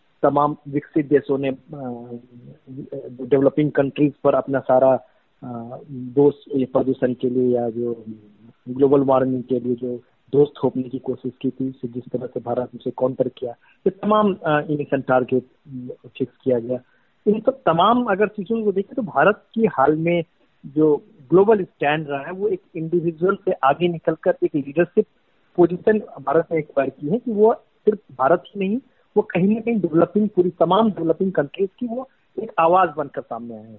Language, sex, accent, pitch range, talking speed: Hindi, male, native, 130-180 Hz, 165 wpm